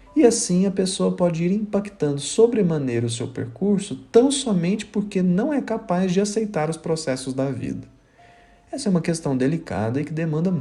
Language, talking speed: Portuguese, 175 wpm